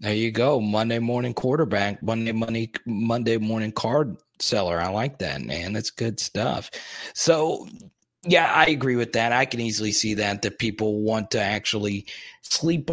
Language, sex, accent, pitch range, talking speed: English, male, American, 105-125 Hz, 165 wpm